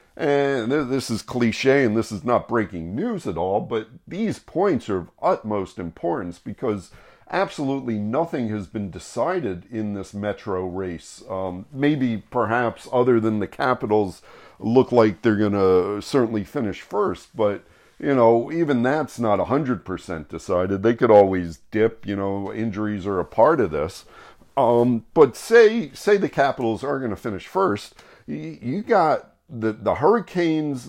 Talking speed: 155 wpm